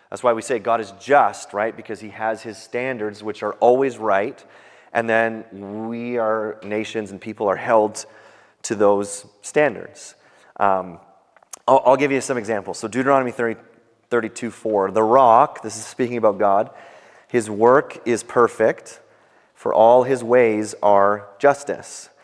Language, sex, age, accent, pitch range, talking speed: English, male, 30-49, American, 110-140 Hz, 155 wpm